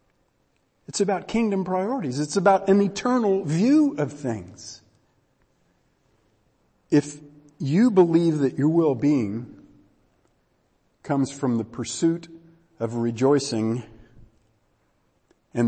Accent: American